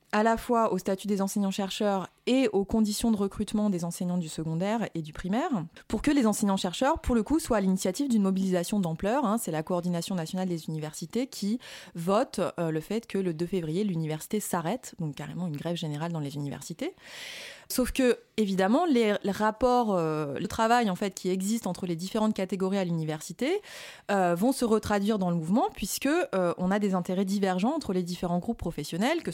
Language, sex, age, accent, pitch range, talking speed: French, female, 30-49, French, 175-225 Hz, 190 wpm